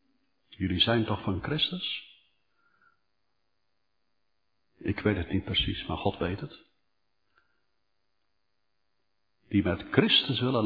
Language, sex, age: Dutch, male, 60-79